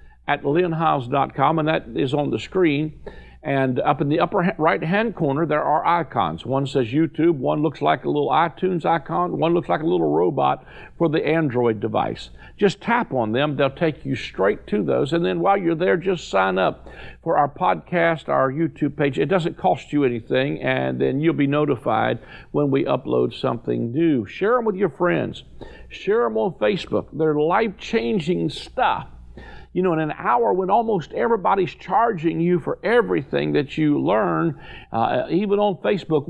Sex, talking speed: male, 180 wpm